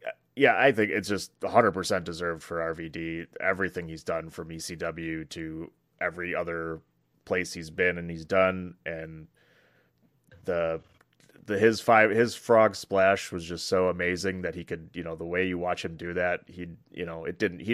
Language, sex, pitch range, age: English, male, 85-95 Hz, 30-49